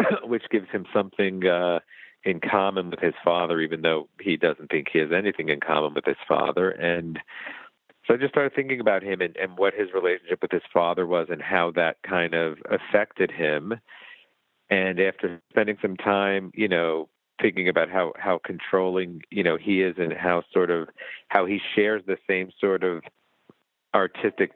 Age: 50-69